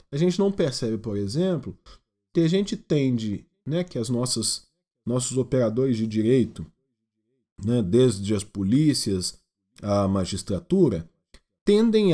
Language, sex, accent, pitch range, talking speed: Portuguese, male, Brazilian, 120-185 Hz, 120 wpm